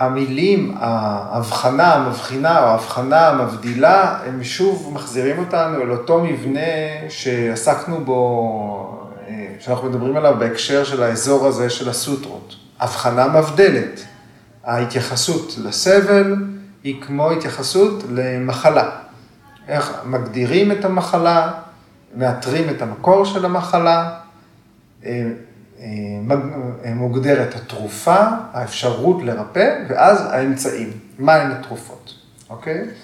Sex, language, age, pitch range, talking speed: male, Hebrew, 30-49, 120-165 Hz, 90 wpm